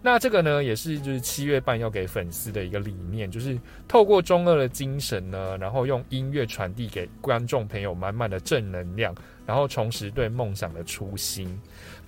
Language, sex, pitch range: Chinese, male, 95-130 Hz